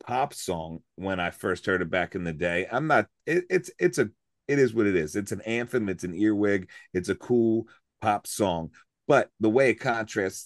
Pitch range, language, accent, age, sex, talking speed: 100-135 Hz, English, American, 30-49, male, 220 wpm